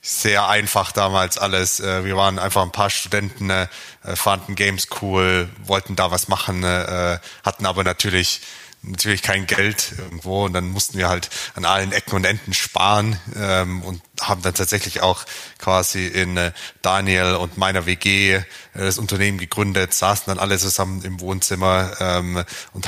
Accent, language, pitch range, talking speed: German, German, 85-95 Hz, 145 wpm